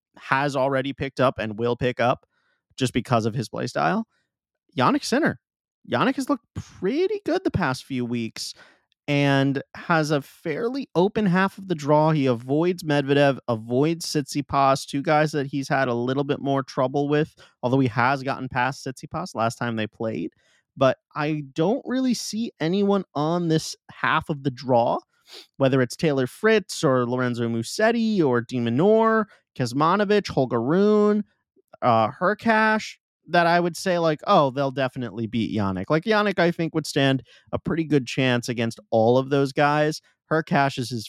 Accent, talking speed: American, 165 wpm